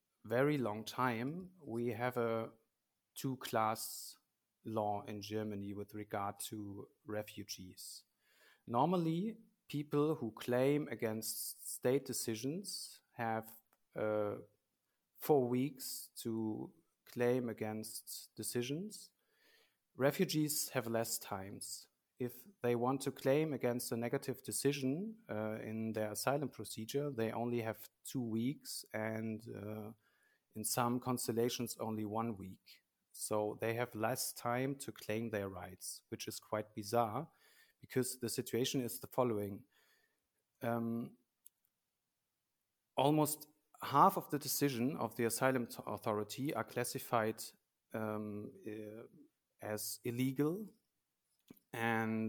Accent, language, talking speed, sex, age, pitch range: German, English, 110 wpm, male, 30-49, 110-135 Hz